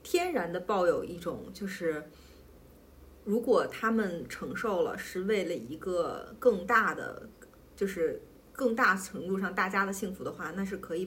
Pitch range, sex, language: 170-240 Hz, female, Chinese